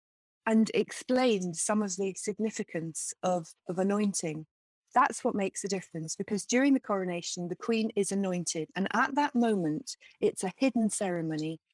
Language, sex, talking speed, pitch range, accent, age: English, female, 155 wpm, 180-225 Hz, British, 40-59